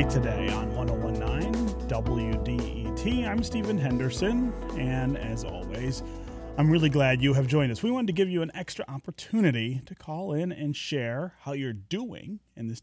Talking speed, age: 165 wpm, 30-49